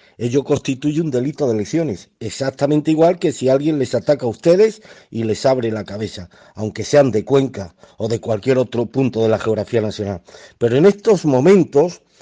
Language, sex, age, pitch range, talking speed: Spanish, male, 50-69, 120-180 Hz, 180 wpm